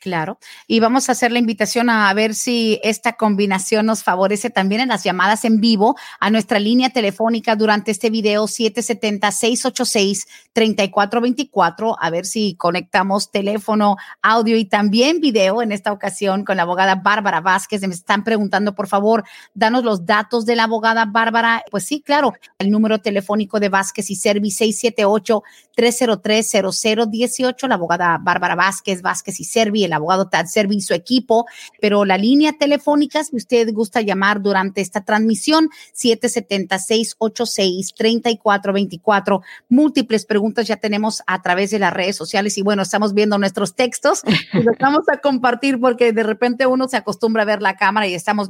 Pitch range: 200-240 Hz